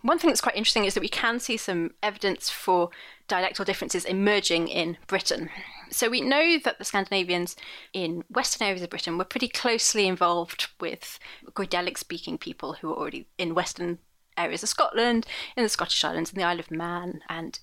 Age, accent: 30-49, British